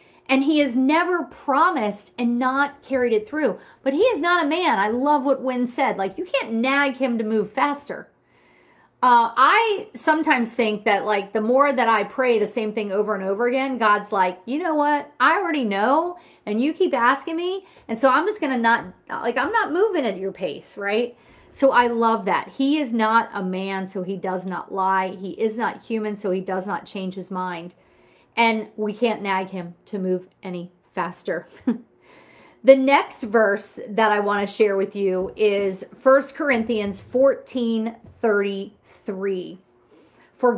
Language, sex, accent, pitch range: English, female, American, 200-270 Hz